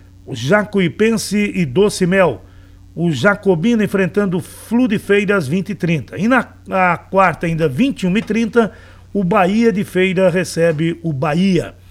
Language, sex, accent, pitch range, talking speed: Portuguese, male, Brazilian, 155-200 Hz, 130 wpm